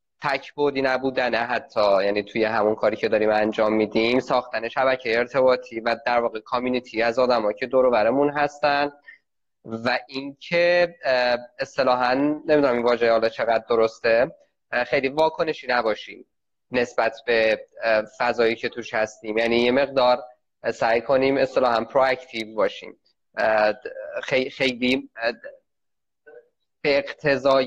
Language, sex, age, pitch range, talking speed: Persian, male, 20-39, 115-155 Hz, 115 wpm